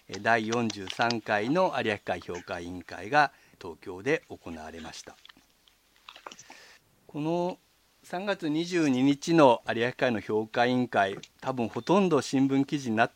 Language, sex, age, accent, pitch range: Japanese, male, 50-69, native, 105-150 Hz